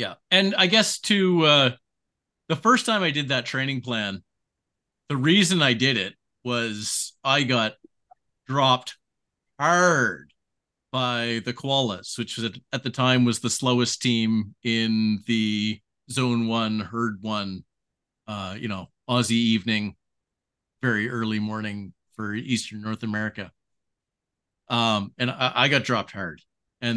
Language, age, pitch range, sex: English, 40-59, 110-130 Hz, male